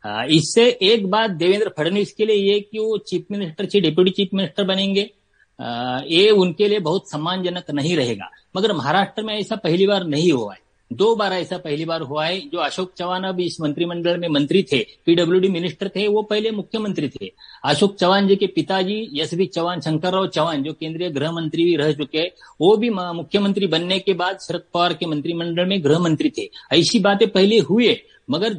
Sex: male